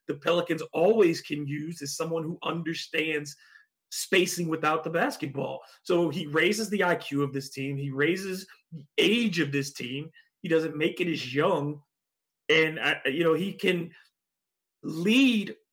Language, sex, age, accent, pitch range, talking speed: English, male, 30-49, American, 150-185 Hz, 155 wpm